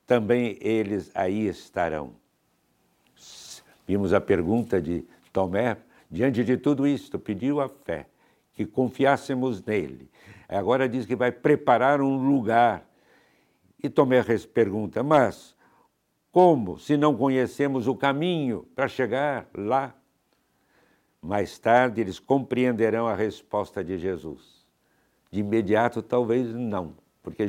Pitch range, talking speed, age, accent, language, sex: 105-135 Hz, 115 wpm, 60-79, Brazilian, Portuguese, male